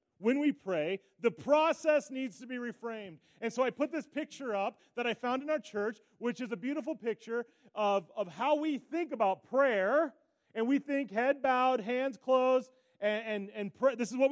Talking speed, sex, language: 195 wpm, male, English